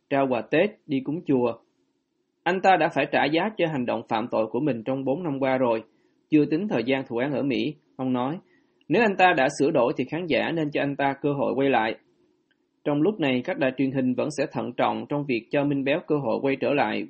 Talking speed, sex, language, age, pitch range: 255 wpm, male, Vietnamese, 20-39, 130-165 Hz